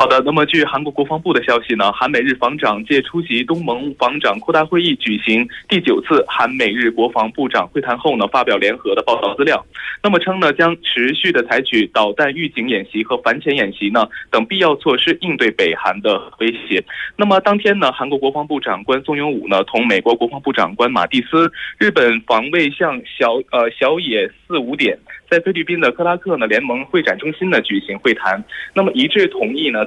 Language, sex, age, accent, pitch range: Korean, male, 20-39, Chinese, 135-205 Hz